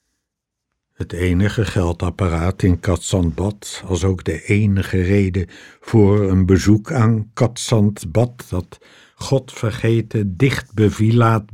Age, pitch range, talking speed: 60-79, 95-115 Hz, 95 wpm